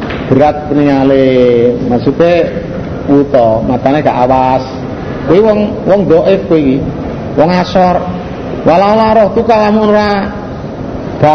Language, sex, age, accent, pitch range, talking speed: Indonesian, male, 50-69, native, 160-220 Hz, 100 wpm